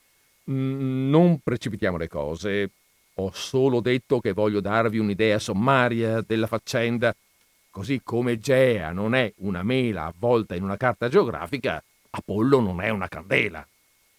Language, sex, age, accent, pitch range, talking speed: Italian, male, 50-69, native, 110-160 Hz, 130 wpm